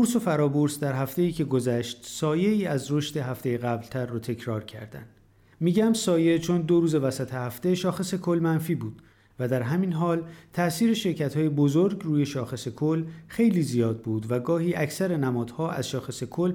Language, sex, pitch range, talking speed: Persian, male, 125-170 Hz, 165 wpm